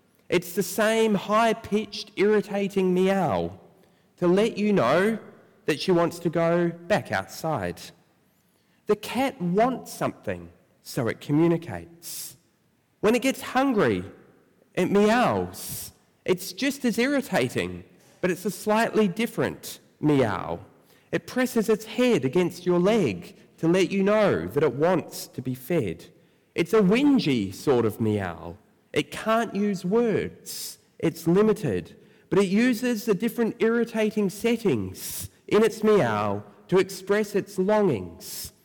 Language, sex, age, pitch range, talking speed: English, male, 30-49, 165-220 Hz, 130 wpm